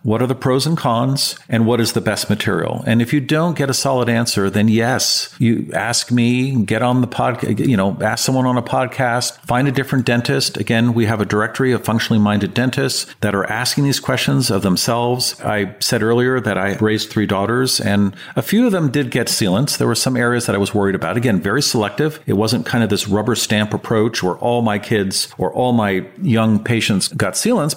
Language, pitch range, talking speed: English, 100-125 Hz, 225 wpm